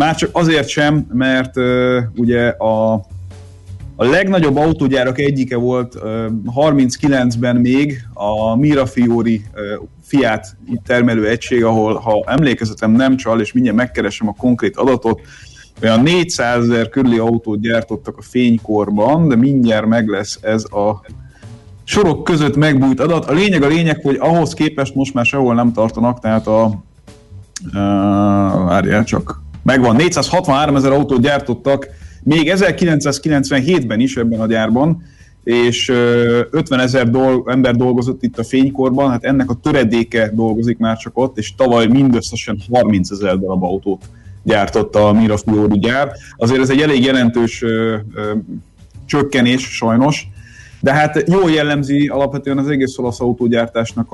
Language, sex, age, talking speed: Hungarian, male, 30-49, 135 wpm